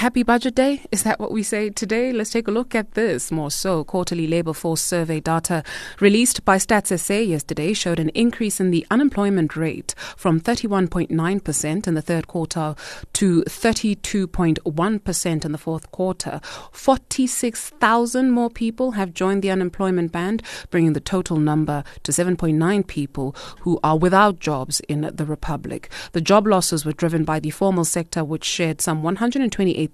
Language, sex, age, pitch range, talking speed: English, female, 30-49, 160-205 Hz, 160 wpm